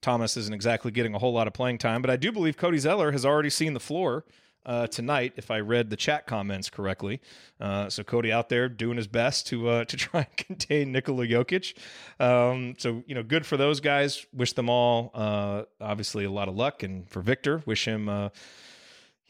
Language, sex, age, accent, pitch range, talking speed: English, male, 30-49, American, 110-140 Hz, 215 wpm